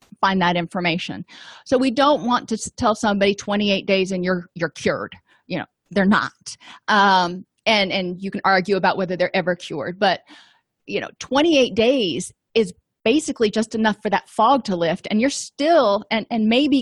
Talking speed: 180 wpm